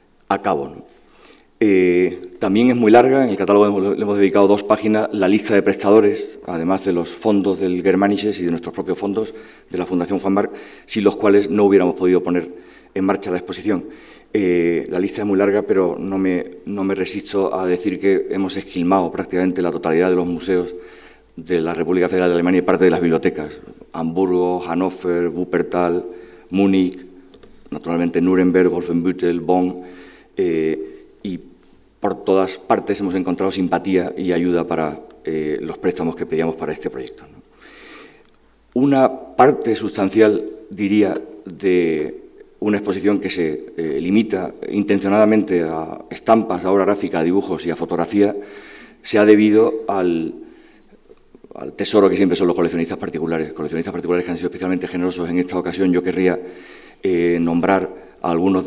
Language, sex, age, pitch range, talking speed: Spanish, male, 40-59, 90-100 Hz, 160 wpm